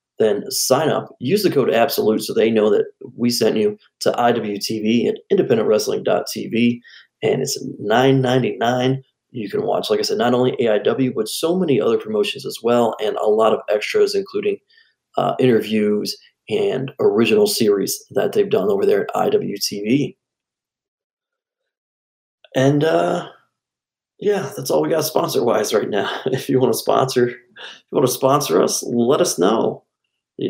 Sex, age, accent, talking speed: male, 30-49, American, 160 wpm